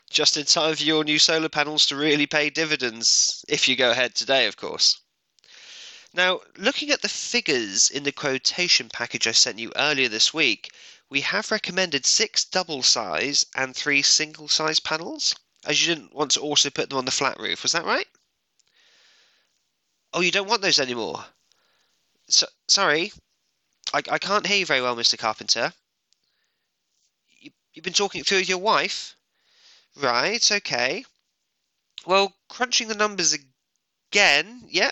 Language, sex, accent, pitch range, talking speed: English, male, British, 135-200 Hz, 155 wpm